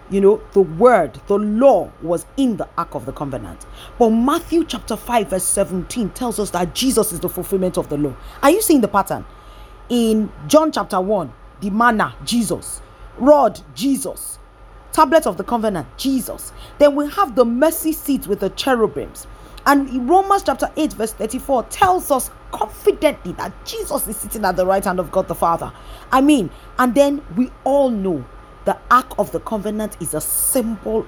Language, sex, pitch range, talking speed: English, female, 175-265 Hz, 180 wpm